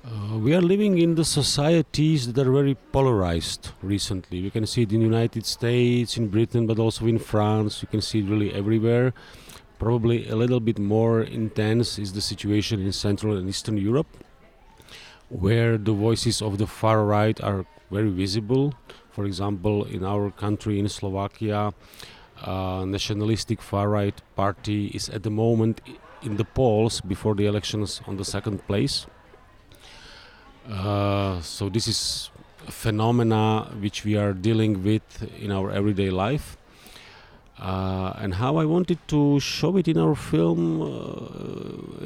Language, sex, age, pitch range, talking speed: French, male, 40-59, 100-115 Hz, 155 wpm